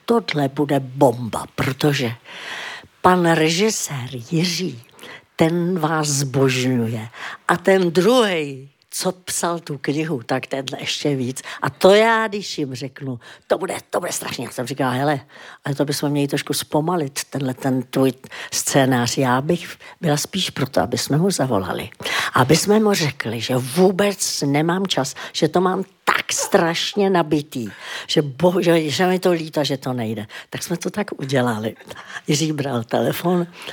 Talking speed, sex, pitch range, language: 155 wpm, female, 135-180 Hz, Czech